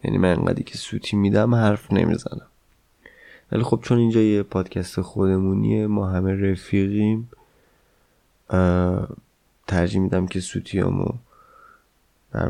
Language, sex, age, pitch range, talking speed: Persian, male, 20-39, 95-110 Hz, 110 wpm